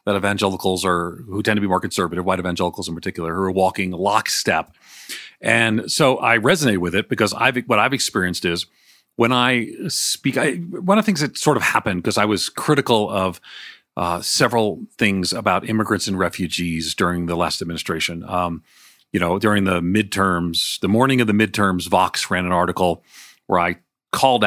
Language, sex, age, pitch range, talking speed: English, male, 40-59, 90-110 Hz, 185 wpm